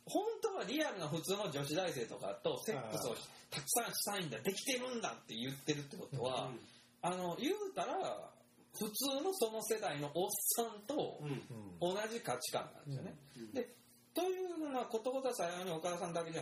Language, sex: Japanese, male